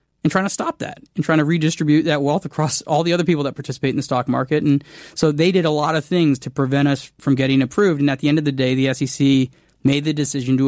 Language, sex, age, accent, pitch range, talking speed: English, male, 20-39, American, 140-175 Hz, 275 wpm